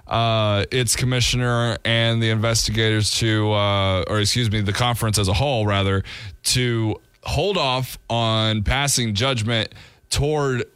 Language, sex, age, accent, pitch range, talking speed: English, male, 20-39, American, 105-120 Hz, 135 wpm